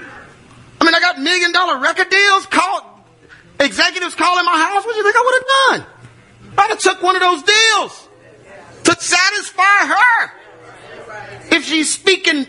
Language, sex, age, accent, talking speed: English, male, 30-49, American, 165 wpm